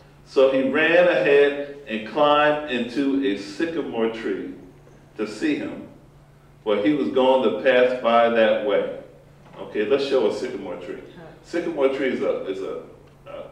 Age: 50-69